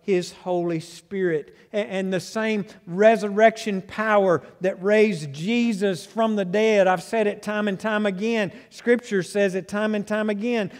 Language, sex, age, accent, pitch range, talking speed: English, male, 50-69, American, 190-220 Hz, 155 wpm